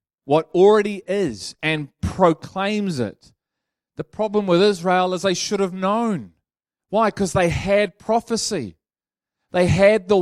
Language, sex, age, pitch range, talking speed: English, male, 30-49, 185-220 Hz, 135 wpm